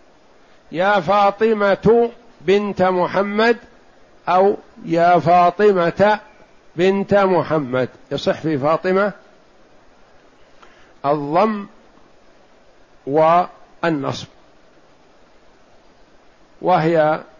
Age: 60-79